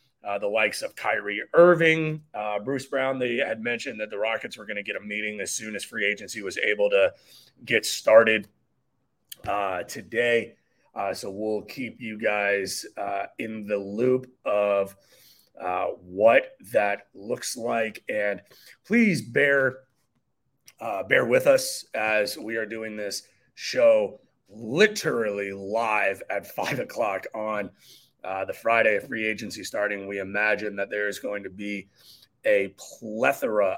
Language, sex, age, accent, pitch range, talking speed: English, male, 30-49, American, 105-145 Hz, 150 wpm